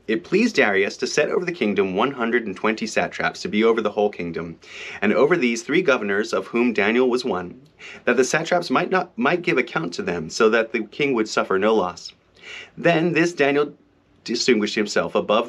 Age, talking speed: 30-49, 195 wpm